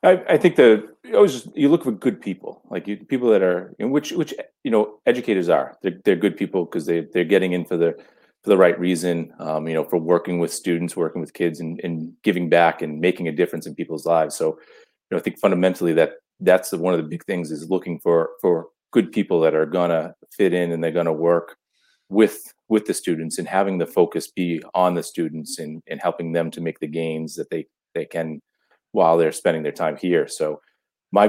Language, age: English, 30-49